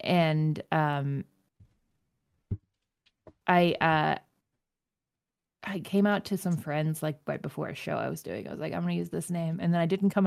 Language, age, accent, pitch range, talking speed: English, 20-39, American, 155-195 Hz, 180 wpm